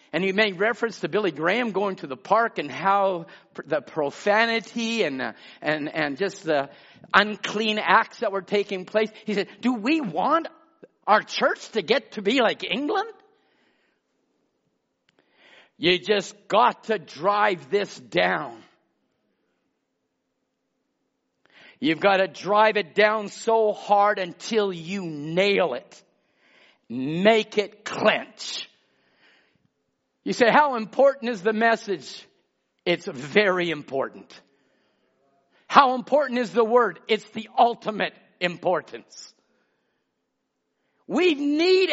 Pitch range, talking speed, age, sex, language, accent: 195-280 Hz, 115 wpm, 50-69, male, English, American